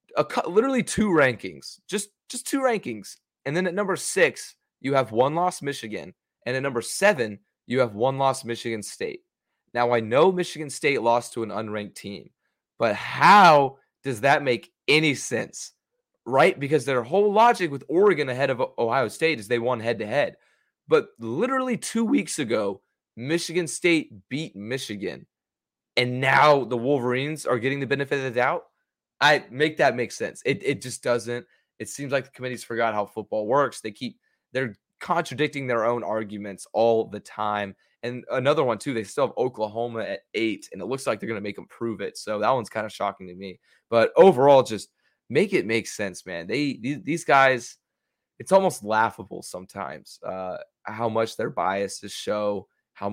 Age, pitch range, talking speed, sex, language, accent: 20-39, 105-150 Hz, 180 wpm, male, English, American